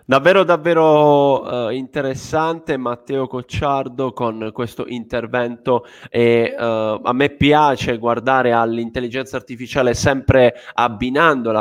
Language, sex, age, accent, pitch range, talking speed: Italian, male, 20-39, native, 115-140 Hz, 100 wpm